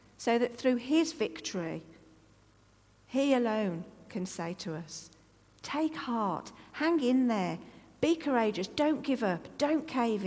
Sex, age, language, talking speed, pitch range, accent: female, 50-69, English, 135 wpm, 170-250 Hz, British